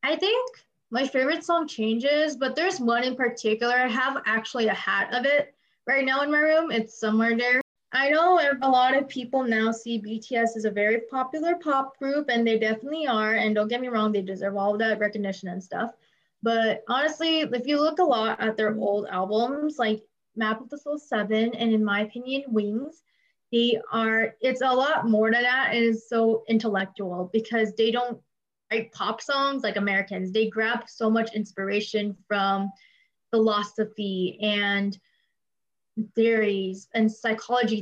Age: 20-39